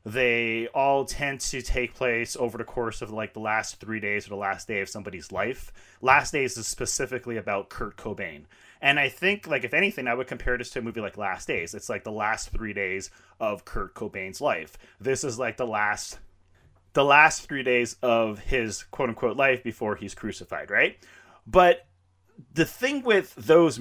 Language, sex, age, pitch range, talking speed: English, male, 30-49, 105-140 Hz, 190 wpm